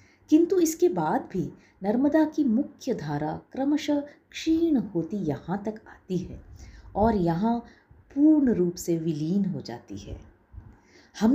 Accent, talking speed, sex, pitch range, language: native, 130 wpm, female, 165-235 Hz, Hindi